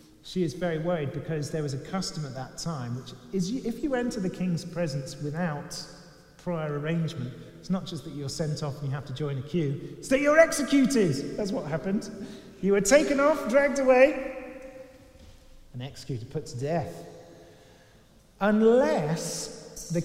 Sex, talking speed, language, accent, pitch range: male, 170 wpm, English, British, 160-235 Hz